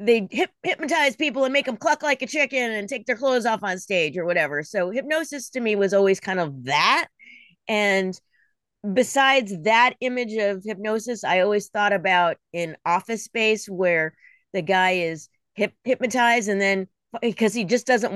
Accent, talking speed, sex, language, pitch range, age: American, 170 wpm, female, English, 185-245 Hz, 30-49